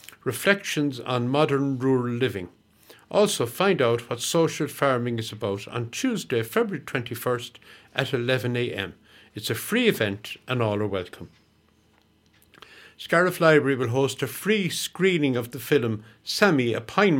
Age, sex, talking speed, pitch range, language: 60-79, male, 140 wpm, 115-160 Hz, English